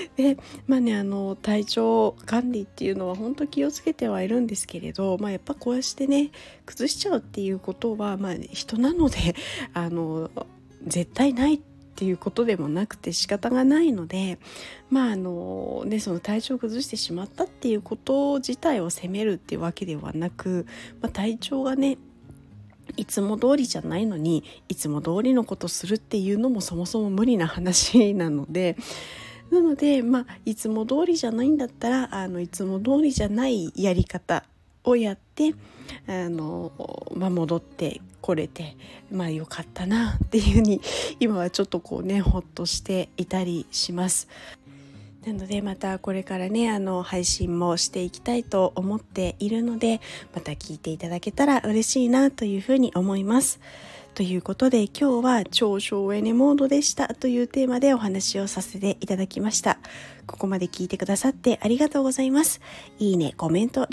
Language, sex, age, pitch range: Japanese, female, 40-59, 185-260 Hz